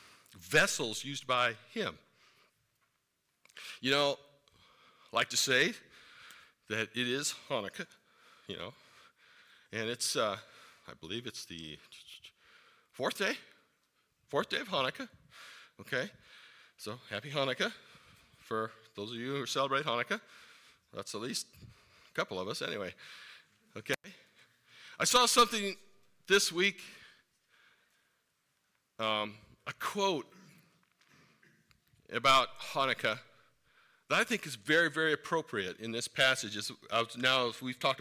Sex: male